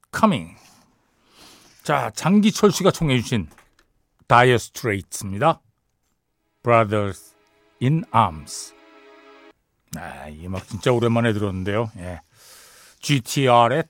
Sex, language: male, Korean